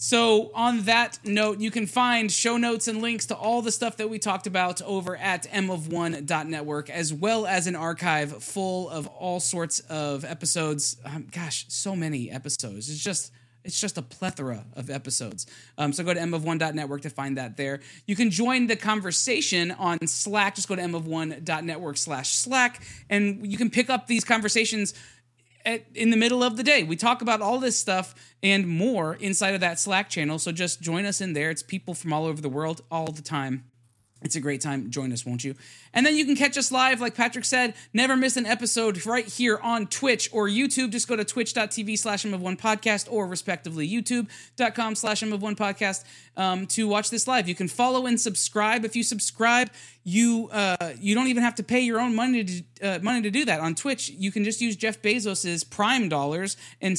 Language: English